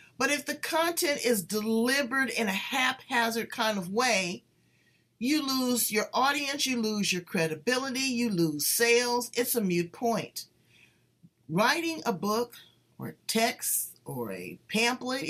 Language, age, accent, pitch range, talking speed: English, 50-69, American, 205-255 Hz, 135 wpm